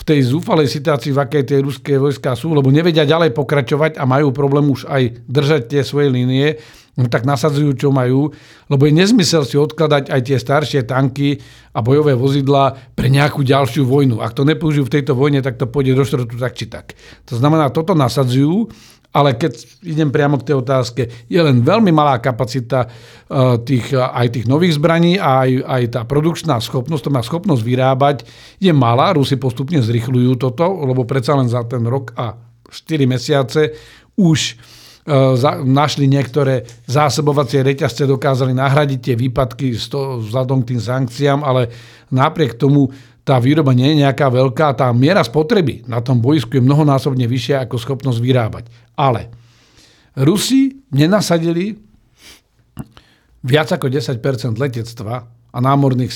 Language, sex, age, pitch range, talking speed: Slovak, male, 50-69, 125-145 Hz, 160 wpm